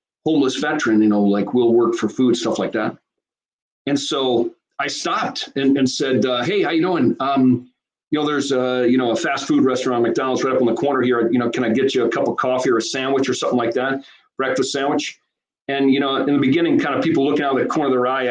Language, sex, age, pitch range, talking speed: English, male, 40-59, 120-145 Hz, 255 wpm